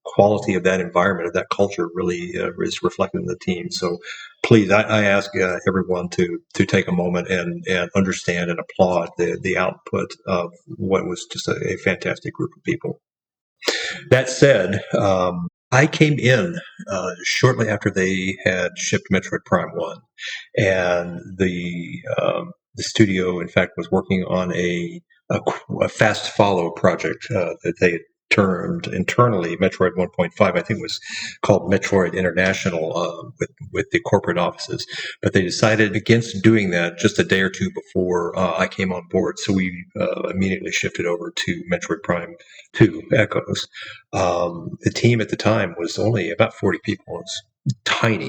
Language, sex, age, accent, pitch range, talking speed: English, male, 40-59, American, 90-110 Hz, 170 wpm